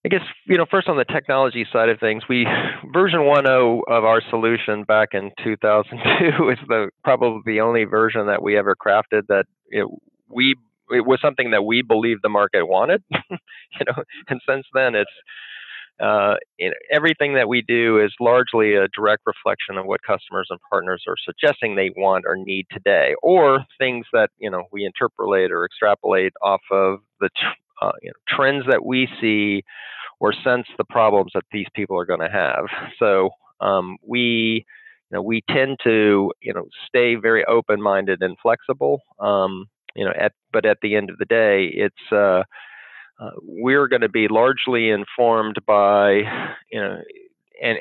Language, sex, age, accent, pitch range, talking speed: English, male, 40-59, American, 105-125 Hz, 180 wpm